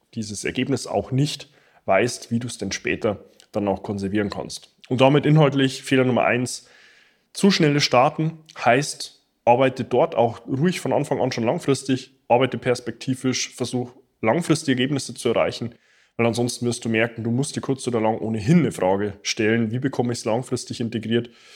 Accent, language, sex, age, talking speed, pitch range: German, German, male, 20-39, 170 wpm, 115-135 Hz